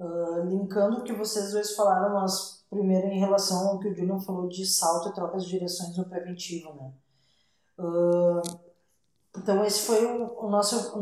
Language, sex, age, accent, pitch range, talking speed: Portuguese, female, 20-39, Brazilian, 185-215 Hz, 175 wpm